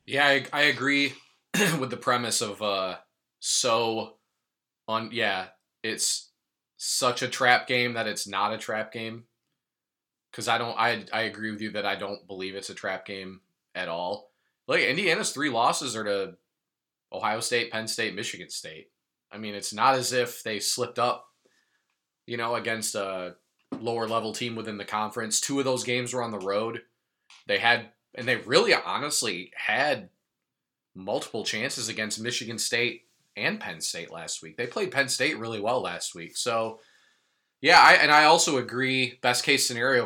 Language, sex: English, male